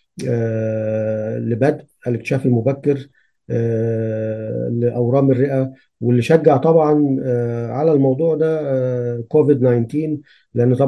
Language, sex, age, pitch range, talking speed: English, male, 40-59, 115-140 Hz, 70 wpm